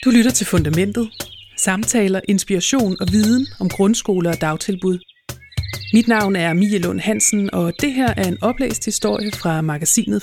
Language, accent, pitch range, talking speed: Danish, native, 175-220 Hz, 155 wpm